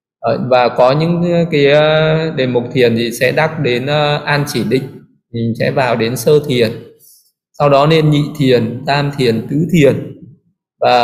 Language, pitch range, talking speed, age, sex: Vietnamese, 120-155 Hz, 165 wpm, 20-39, male